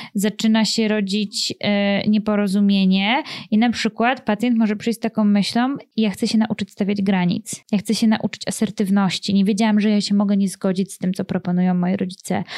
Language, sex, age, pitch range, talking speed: Polish, female, 20-39, 200-225 Hz, 180 wpm